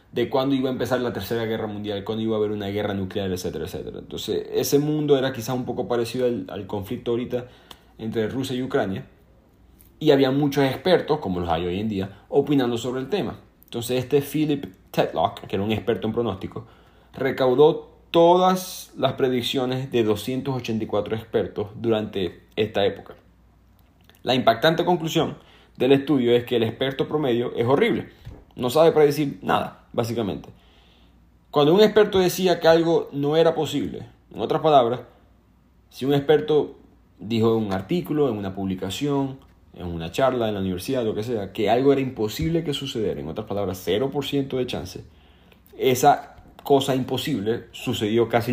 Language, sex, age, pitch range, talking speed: Spanish, male, 30-49, 105-140 Hz, 165 wpm